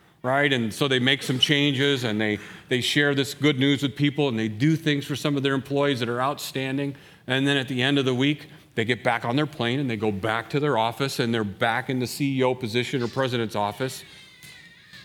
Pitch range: 110-150 Hz